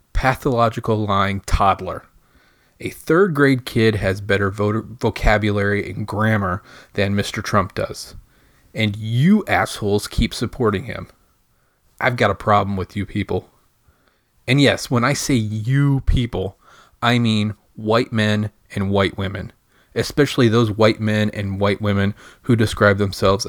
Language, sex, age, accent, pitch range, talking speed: English, male, 30-49, American, 100-125 Hz, 135 wpm